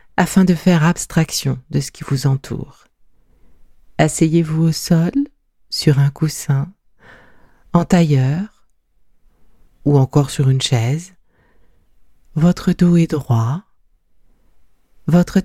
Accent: French